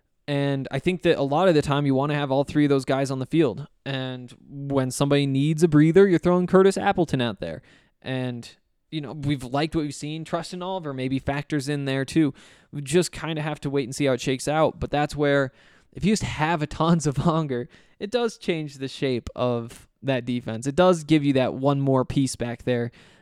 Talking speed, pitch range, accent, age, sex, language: 240 wpm, 130-155 Hz, American, 20-39, male, English